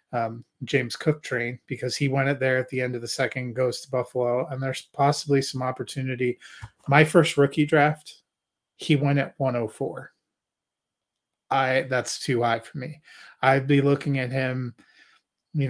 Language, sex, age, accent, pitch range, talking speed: English, male, 30-49, American, 130-150 Hz, 165 wpm